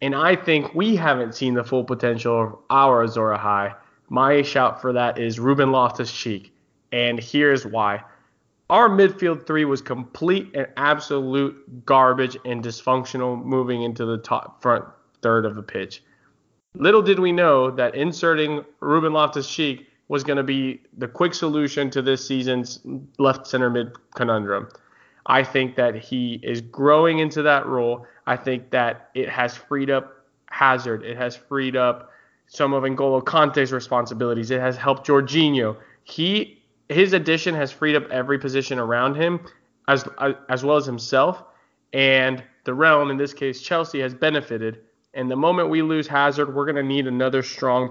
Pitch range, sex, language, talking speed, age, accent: 120-145 Hz, male, English, 165 wpm, 20-39, American